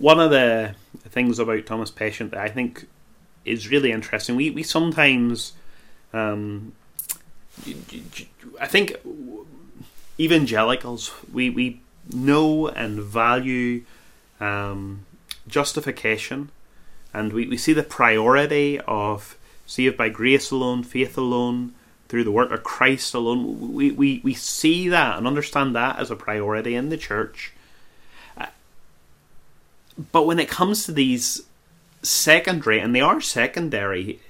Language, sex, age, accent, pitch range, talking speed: English, male, 30-49, British, 110-150 Hz, 125 wpm